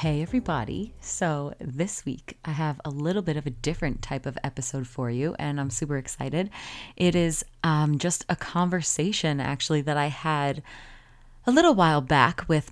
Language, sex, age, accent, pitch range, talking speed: English, female, 30-49, American, 140-165 Hz, 175 wpm